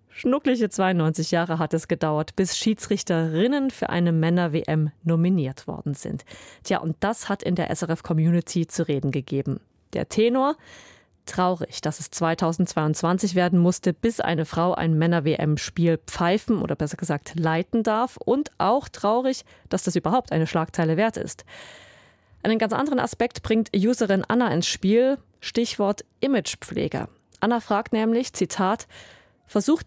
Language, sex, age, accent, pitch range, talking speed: German, female, 30-49, German, 165-230 Hz, 140 wpm